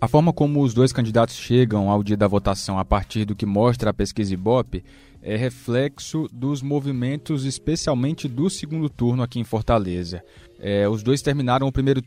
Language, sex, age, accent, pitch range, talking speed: Portuguese, male, 20-39, Brazilian, 110-140 Hz, 175 wpm